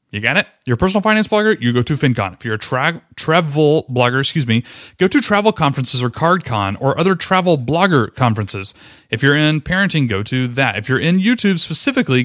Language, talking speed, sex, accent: English, 200 wpm, male, American